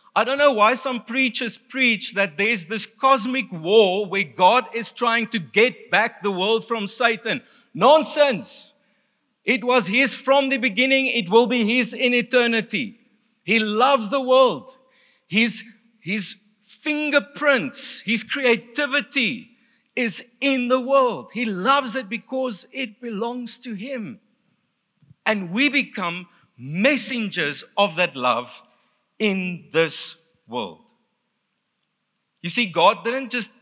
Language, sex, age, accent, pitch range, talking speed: English, male, 50-69, South African, 190-255 Hz, 130 wpm